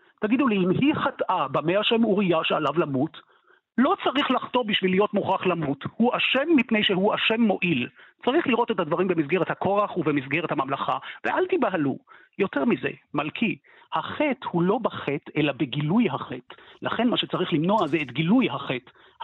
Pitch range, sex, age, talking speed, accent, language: 155-215 Hz, male, 50-69, 160 wpm, native, Hebrew